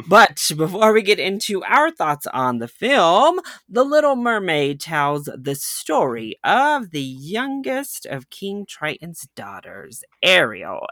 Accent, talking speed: American, 130 wpm